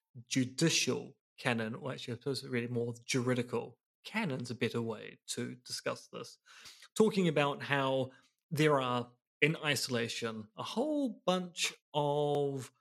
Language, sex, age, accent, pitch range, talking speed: English, male, 30-49, British, 125-155 Hz, 130 wpm